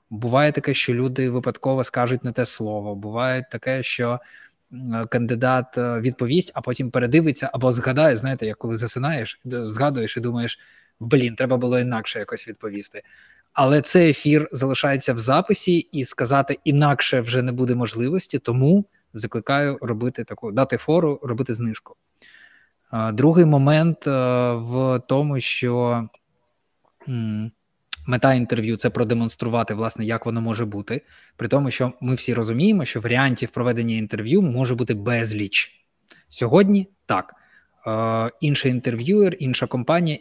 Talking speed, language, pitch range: 135 wpm, Ukrainian, 120-135 Hz